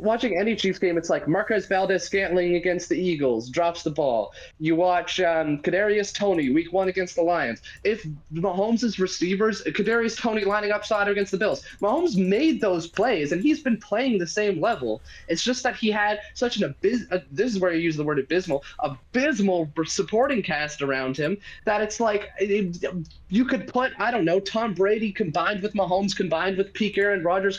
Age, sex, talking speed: 20-39, male, 190 wpm